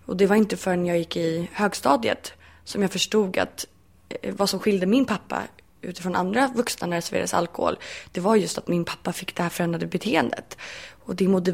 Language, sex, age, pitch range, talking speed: Swedish, female, 20-39, 170-195 Hz, 200 wpm